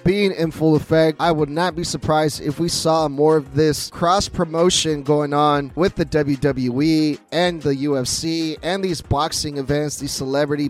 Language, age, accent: English, 20-39, American